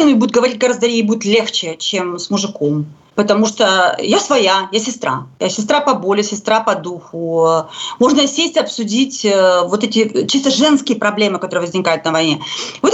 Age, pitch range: 30-49, 210-290 Hz